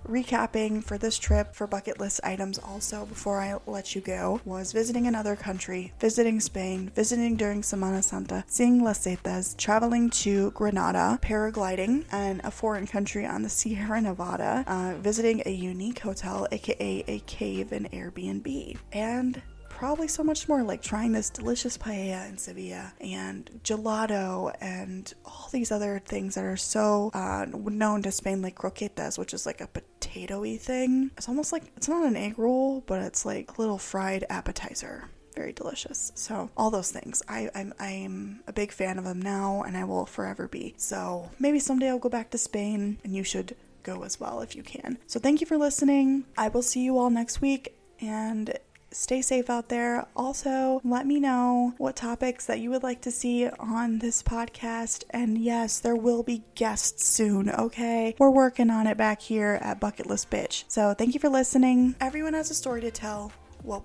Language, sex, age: English, female, 20-39